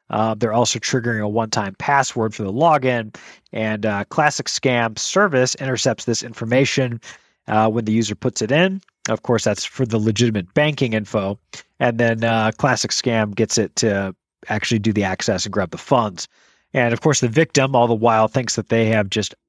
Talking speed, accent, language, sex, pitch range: 190 wpm, American, English, male, 110-130 Hz